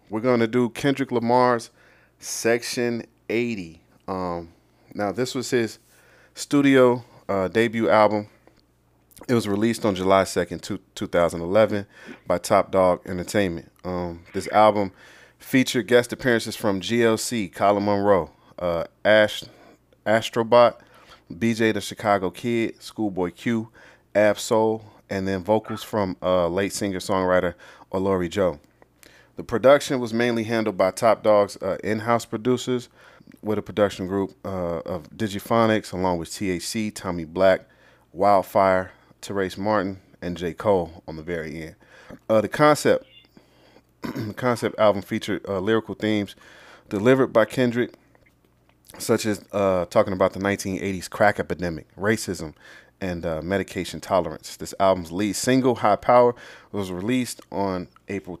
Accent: American